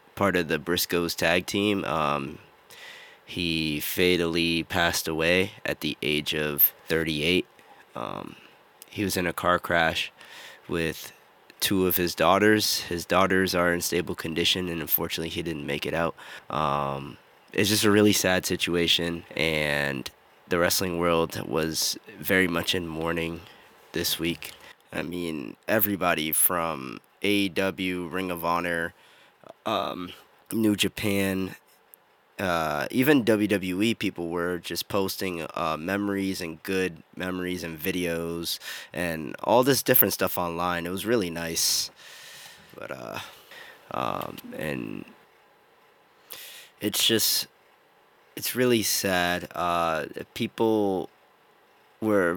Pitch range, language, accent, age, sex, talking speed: 85-100 Hz, English, American, 20-39, male, 120 wpm